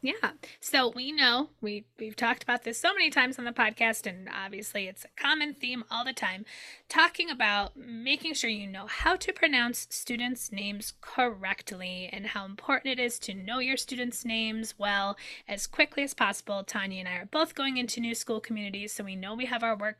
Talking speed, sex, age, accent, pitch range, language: 205 wpm, female, 10-29, American, 210-265 Hz, English